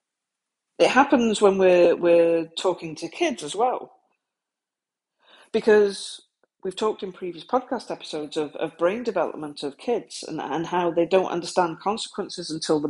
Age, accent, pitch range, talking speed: 40-59, British, 180-255 Hz, 150 wpm